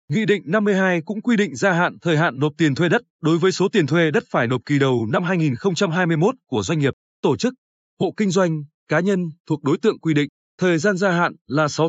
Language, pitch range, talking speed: Vietnamese, 145-200 Hz, 235 wpm